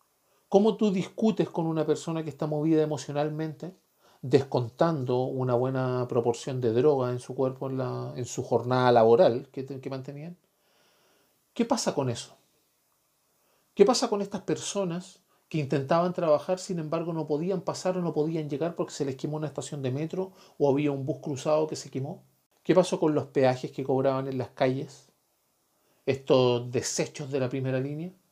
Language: Spanish